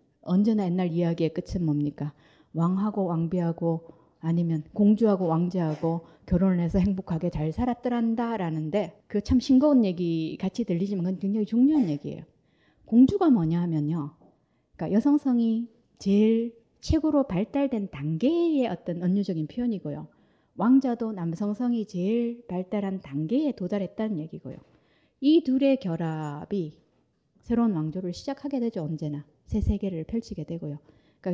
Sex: female